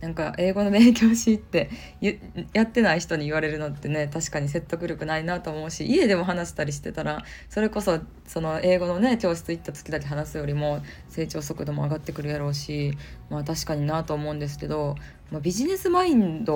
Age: 20-39